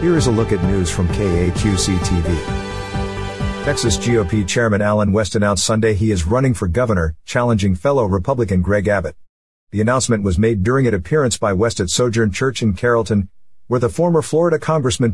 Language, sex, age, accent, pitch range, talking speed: English, male, 50-69, American, 90-120 Hz, 175 wpm